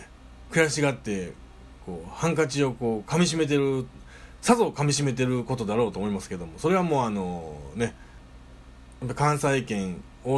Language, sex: Japanese, male